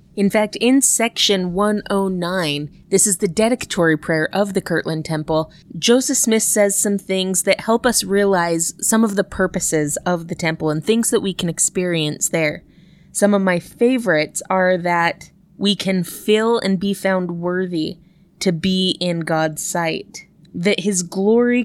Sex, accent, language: female, American, English